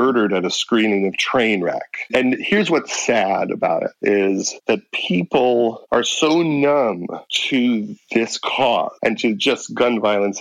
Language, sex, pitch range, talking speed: English, male, 110-140 Hz, 155 wpm